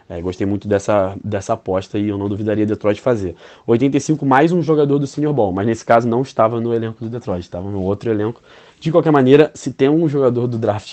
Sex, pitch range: male, 100-120 Hz